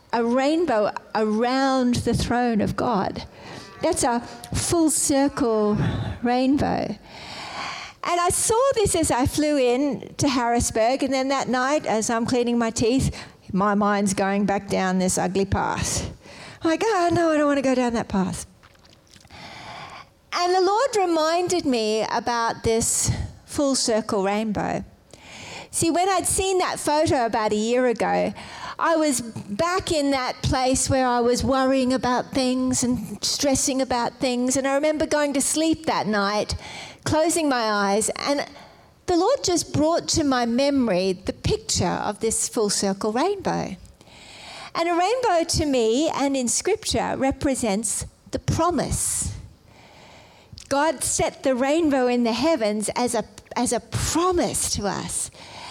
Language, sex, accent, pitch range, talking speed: English, female, Australian, 230-315 Hz, 150 wpm